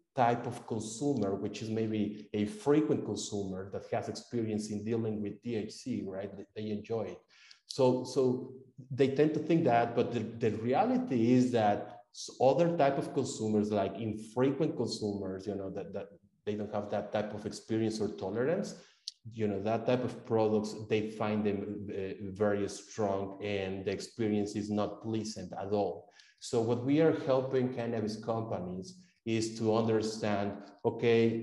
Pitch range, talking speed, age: 105-125 Hz, 160 wpm, 30-49